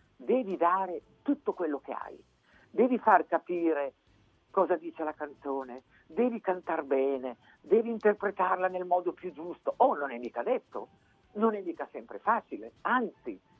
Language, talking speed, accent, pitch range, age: Italian, 150 wpm, native, 150-245 Hz, 50-69